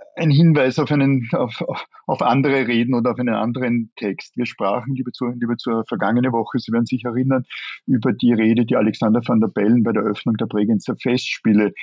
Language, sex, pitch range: German, male, 105-125 Hz